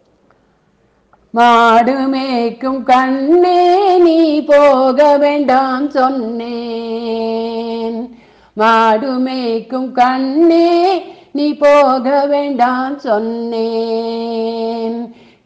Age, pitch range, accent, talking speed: 50-69, 245-330 Hz, native, 50 wpm